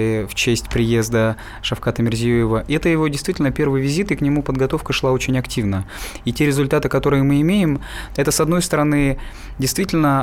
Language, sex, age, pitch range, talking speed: Russian, male, 20-39, 120-145 Hz, 165 wpm